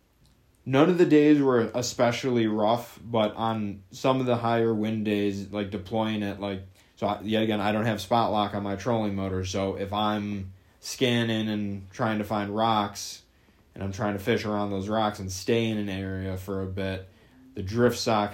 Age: 20-39